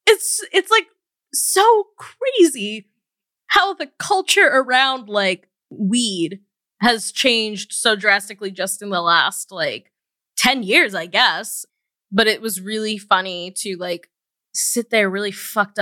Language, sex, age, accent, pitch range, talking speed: English, female, 20-39, American, 185-225 Hz, 135 wpm